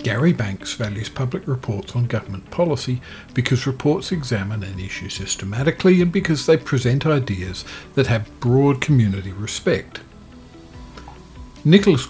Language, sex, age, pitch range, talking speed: English, male, 50-69, 100-135 Hz, 125 wpm